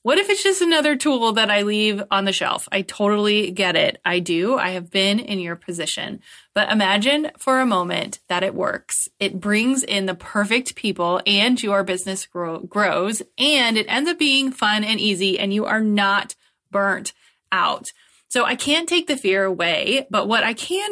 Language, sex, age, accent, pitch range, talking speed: English, female, 20-39, American, 190-245 Hz, 190 wpm